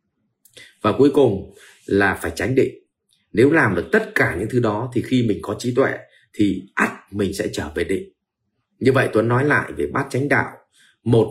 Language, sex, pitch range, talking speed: Vietnamese, male, 100-135 Hz, 200 wpm